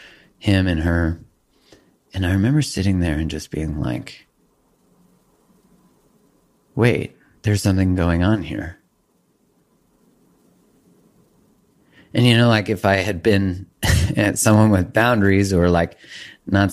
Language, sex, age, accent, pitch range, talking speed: English, male, 30-49, American, 85-105 Hz, 120 wpm